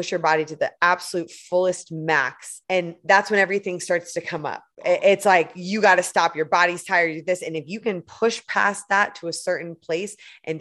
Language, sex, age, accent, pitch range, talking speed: English, female, 20-39, American, 170-210 Hz, 220 wpm